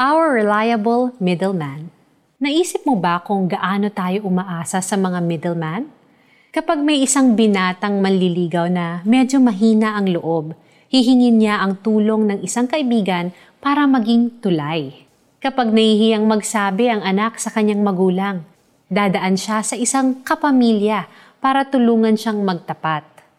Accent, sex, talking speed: native, female, 130 wpm